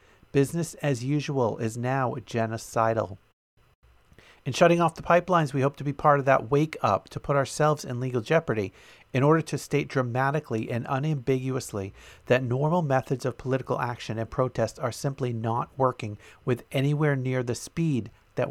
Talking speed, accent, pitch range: 165 wpm, American, 115-145 Hz